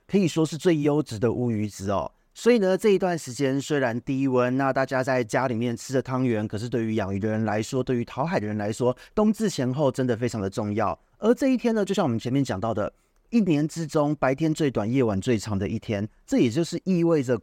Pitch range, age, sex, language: 115-155 Hz, 30-49, male, Chinese